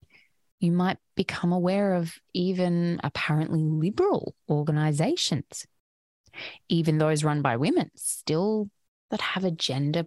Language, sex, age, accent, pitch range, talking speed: English, female, 20-39, Australian, 150-220 Hz, 115 wpm